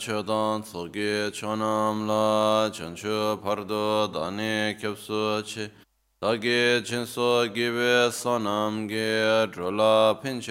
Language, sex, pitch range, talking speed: Italian, male, 100-110 Hz, 80 wpm